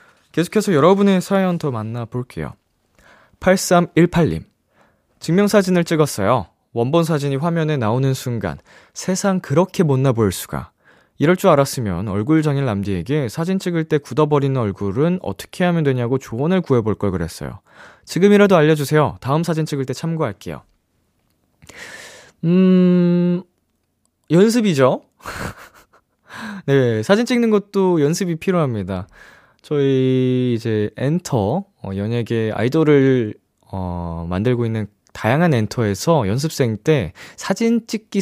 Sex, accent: male, native